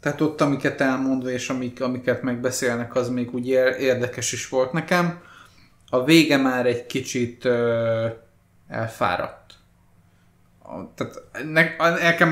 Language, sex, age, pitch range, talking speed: Hungarian, male, 20-39, 120-145 Hz, 100 wpm